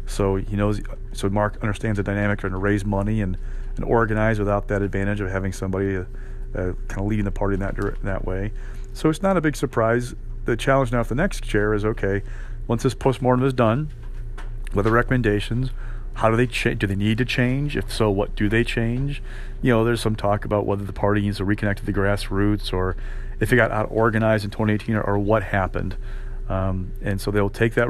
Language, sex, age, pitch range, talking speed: English, male, 40-59, 100-120 Hz, 220 wpm